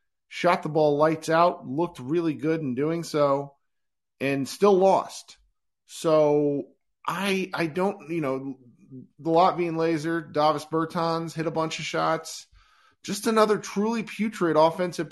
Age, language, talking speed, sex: 40-59, English, 145 wpm, male